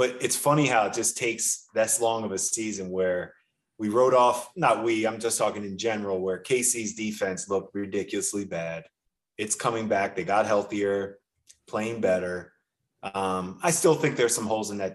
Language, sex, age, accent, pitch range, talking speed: English, male, 20-39, American, 95-115 Hz, 185 wpm